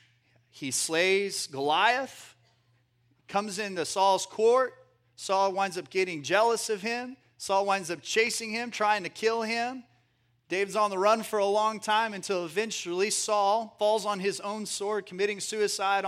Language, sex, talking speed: English, male, 155 wpm